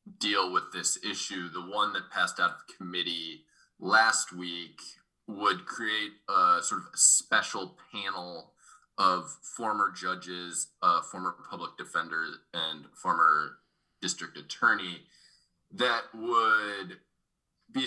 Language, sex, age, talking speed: English, male, 20-39, 120 wpm